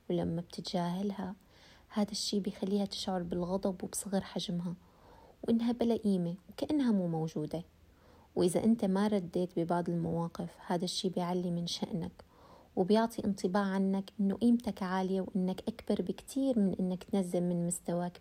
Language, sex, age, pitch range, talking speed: Arabic, female, 20-39, 180-210 Hz, 130 wpm